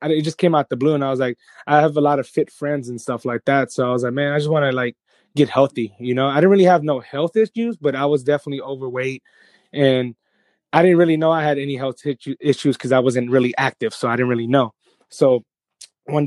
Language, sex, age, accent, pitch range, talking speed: English, male, 20-39, American, 125-150 Hz, 255 wpm